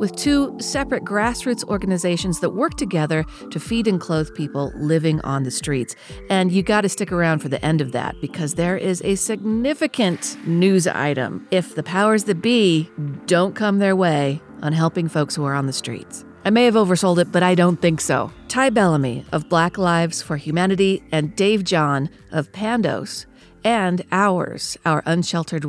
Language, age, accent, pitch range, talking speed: English, 40-59, American, 155-215 Hz, 180 wpm